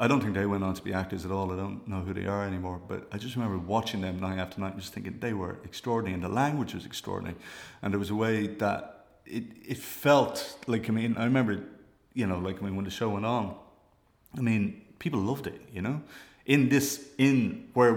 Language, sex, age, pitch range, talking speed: English, male, 30-49, 95-115 Hz, 245 wpm